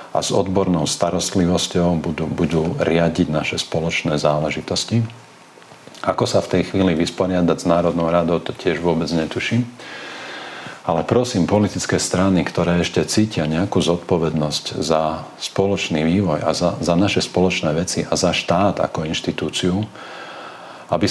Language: Slovak